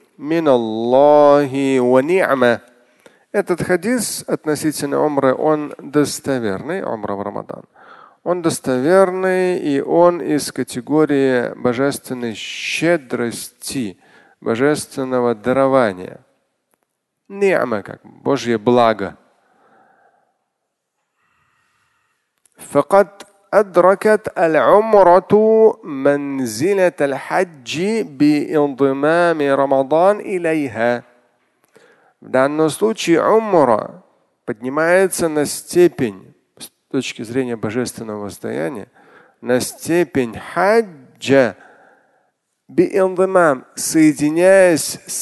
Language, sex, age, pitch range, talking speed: Russian, male, 40-59, 130-185 Hz, 55 wpm